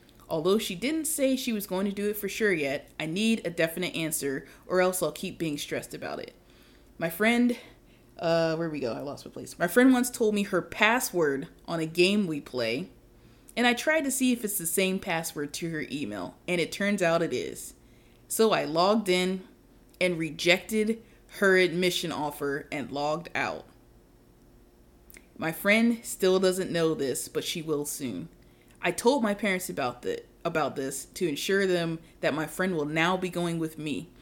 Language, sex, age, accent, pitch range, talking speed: English, female, 20-39, American, 155-200 Hz, 190 wpm